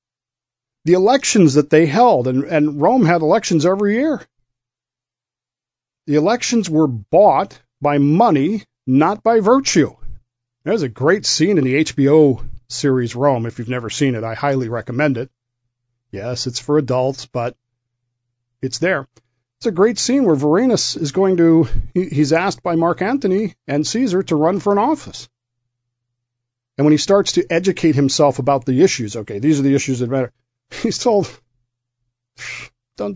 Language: English